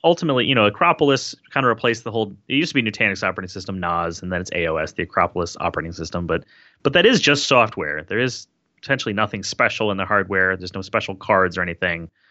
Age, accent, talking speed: 30-49, American, 220 wpm